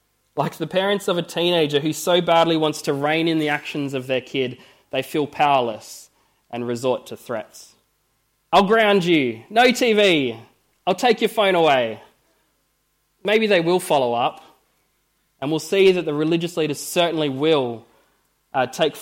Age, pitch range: 20-39, 130-165 Hz